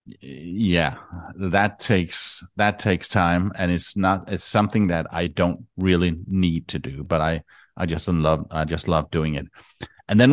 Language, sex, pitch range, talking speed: English, male, 85-100 Hz, 175 wpm